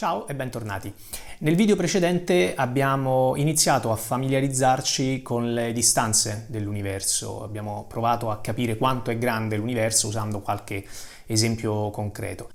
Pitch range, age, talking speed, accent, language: 110-130 Hz, 30-49, 125 wpm, native, Italian